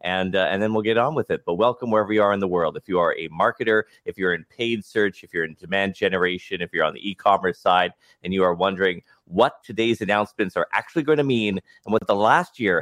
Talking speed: 260 wpm